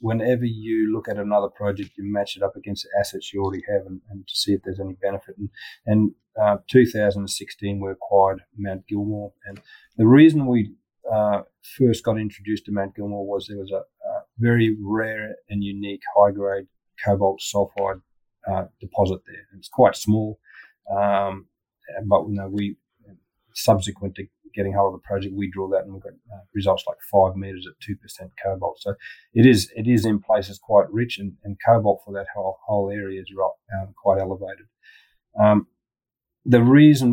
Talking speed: 180 wpm